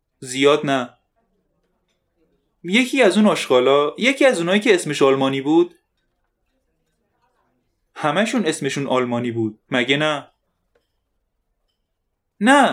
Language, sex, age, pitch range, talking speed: Persian, male, 30-49, 130-200 Hz, 95 wpm